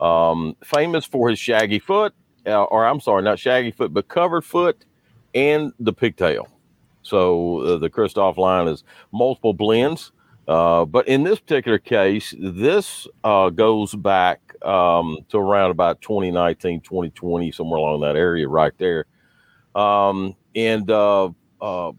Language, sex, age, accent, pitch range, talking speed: English, male, 50-69, American, 90-120 Hz, 145 wpm